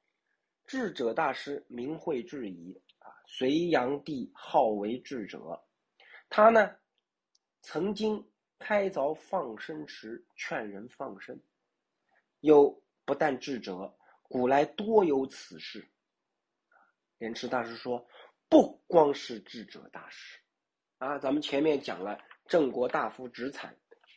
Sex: male